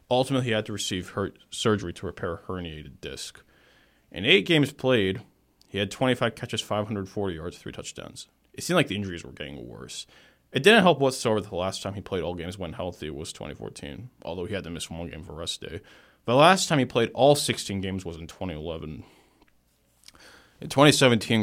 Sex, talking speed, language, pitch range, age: male, 195 wpm, English, 90-120 Hz, 20-39